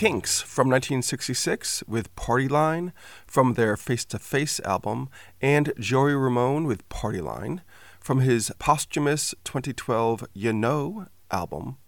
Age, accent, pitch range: 40-59, American, 110-135 Hz